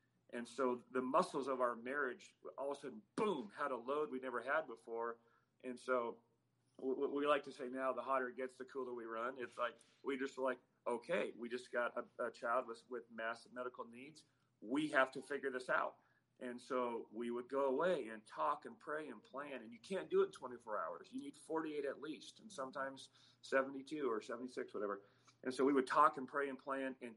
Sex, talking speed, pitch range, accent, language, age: male, 220 wpm, 120-145 Hz, American, English, 40-59